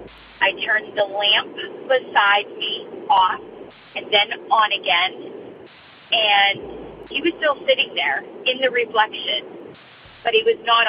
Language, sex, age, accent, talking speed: English, female, 40-59, American, 130 wpm